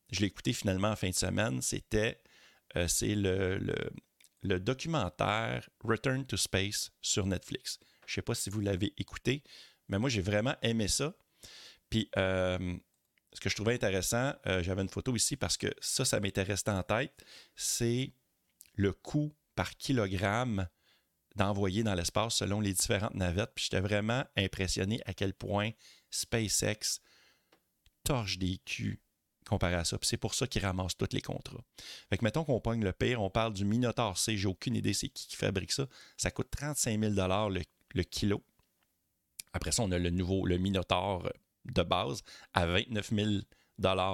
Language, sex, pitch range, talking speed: French, male, 95-115 Hz, 170 wpm